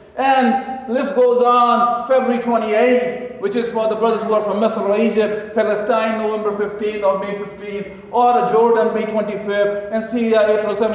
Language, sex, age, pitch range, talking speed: English, male, 50-69, 225-260 Hz, 160 wpm